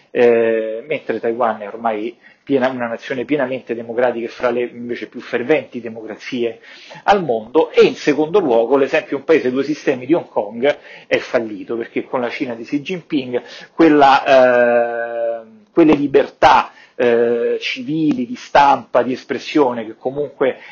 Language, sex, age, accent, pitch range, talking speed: Italian, male, 40-59, native, 120-140 Hz, 155 wpm